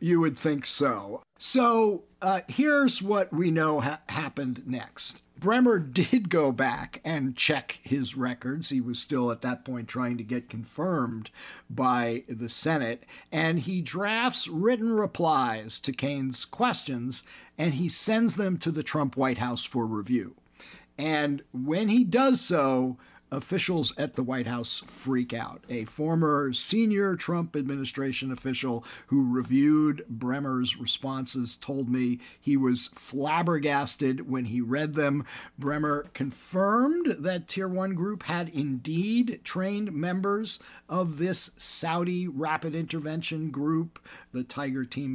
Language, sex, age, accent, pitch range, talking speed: English, male, 50-69, American, 130-175 Hz, 135 wpm